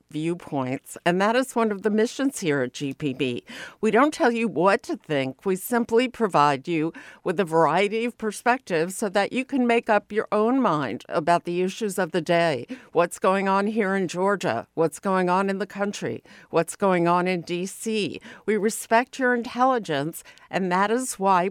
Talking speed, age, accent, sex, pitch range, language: 185 wpm, 60-79, American, female, 170-220 Hz, English